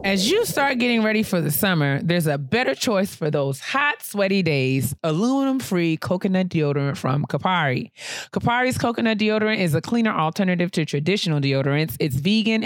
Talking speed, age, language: 165 wpm, 30-49, English